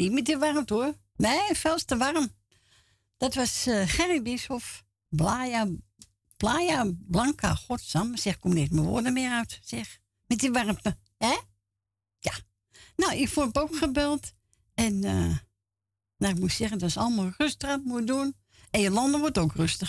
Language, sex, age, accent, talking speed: Dutch, female, 60-79, Dutch, 165 wpm